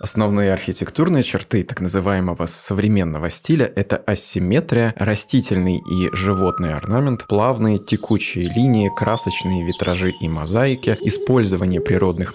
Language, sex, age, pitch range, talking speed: Russian, male, 20-39, 95-115 Hz, 105 wpm